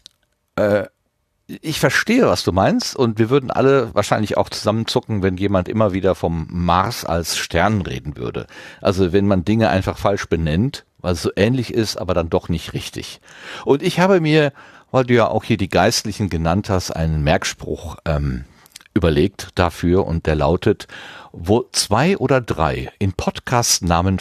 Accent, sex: German, male